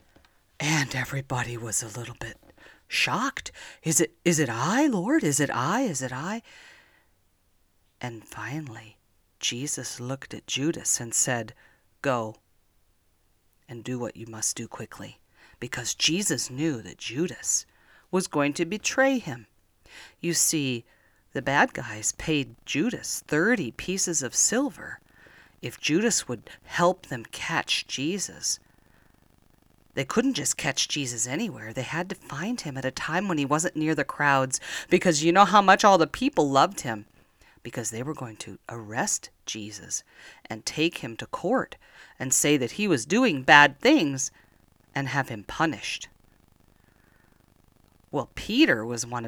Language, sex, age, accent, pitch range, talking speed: English, female, 40-59, American, 115-165 Hz, 145 wpm